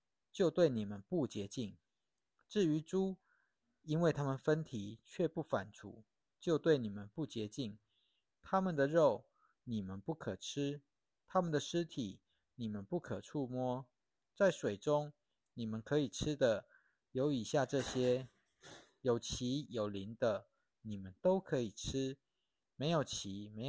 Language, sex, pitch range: Chinese, male, 115-165 Hz